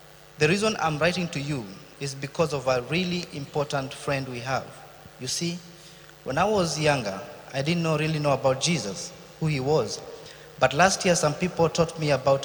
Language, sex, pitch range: English, male, 140-170 Hz